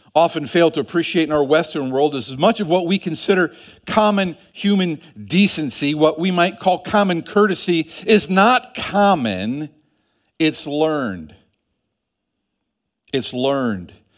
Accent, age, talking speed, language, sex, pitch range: American, 50-69, 130 wpm, English, male, 145-190 Hz